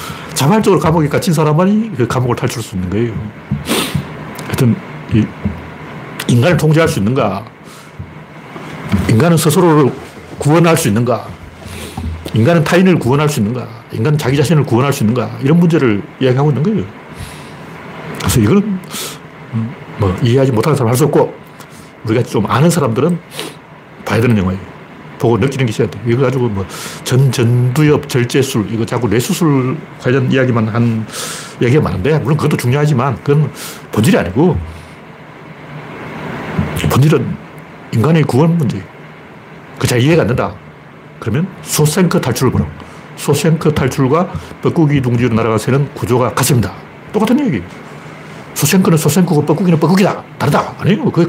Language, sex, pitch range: Korean, male, 120-160 Hz